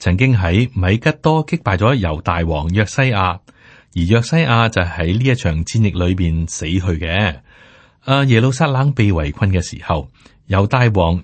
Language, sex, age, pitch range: Chinese, male, 30-49, 90-125 Hz